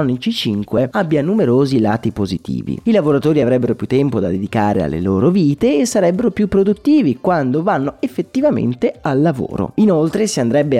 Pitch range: 120-190 Hz